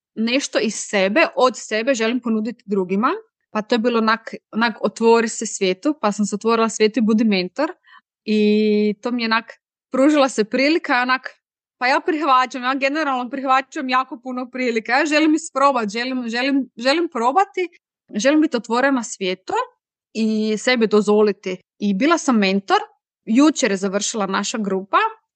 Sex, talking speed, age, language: female, 155 wpm, 20-39, Croatian